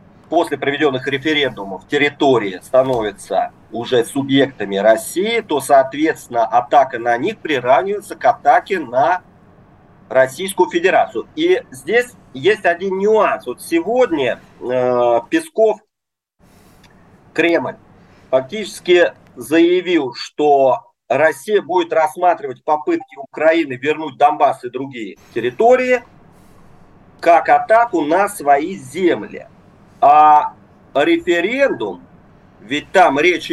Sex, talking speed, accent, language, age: male, 95 wpm, native, Russian, 40-59